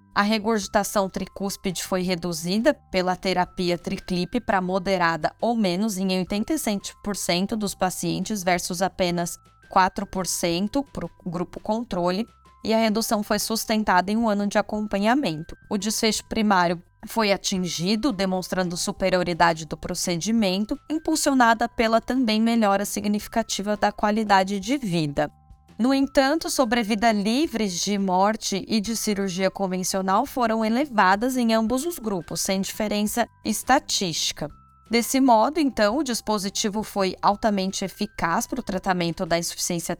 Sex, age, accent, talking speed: female, 10-29, Brazilian, 125 wpm